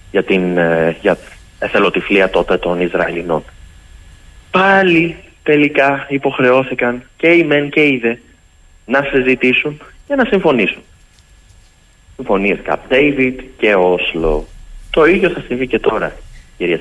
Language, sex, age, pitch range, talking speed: Greek, male, 30-49, 90-150 Hz, 110 wpm